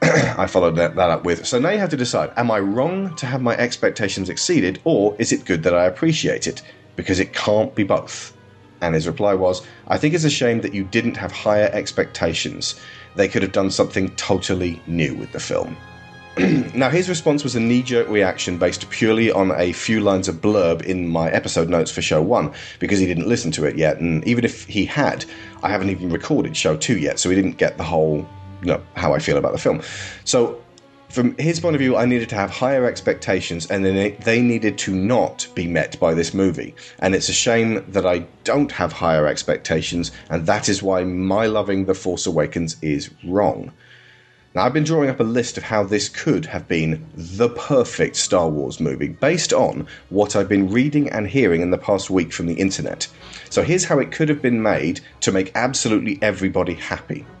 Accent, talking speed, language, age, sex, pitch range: British, 210 wpm, English, 30-49, male, 90-120 Hz